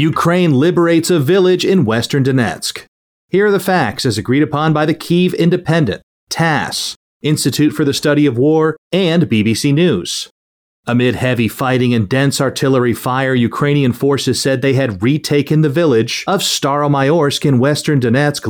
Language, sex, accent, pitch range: English, male, American, 120-150 Hz